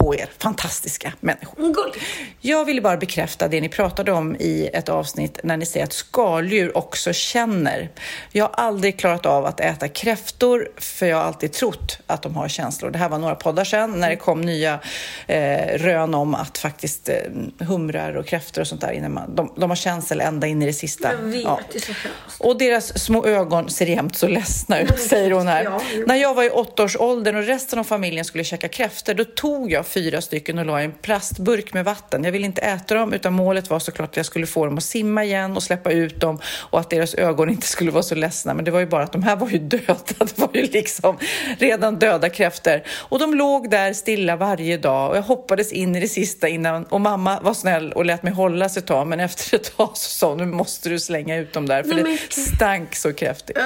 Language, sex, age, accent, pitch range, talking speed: Swedish, female, 40-59, native, 165-220 Hz, 220 wpm